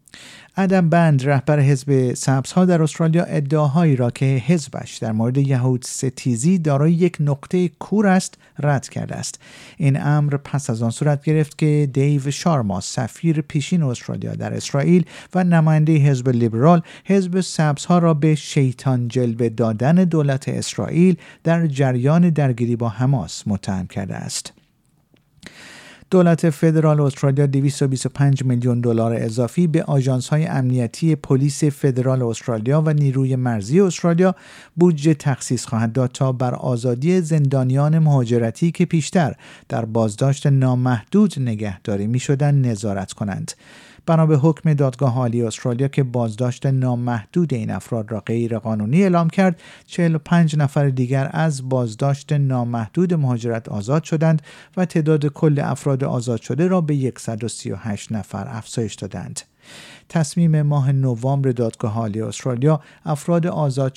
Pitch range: 125-160 Hz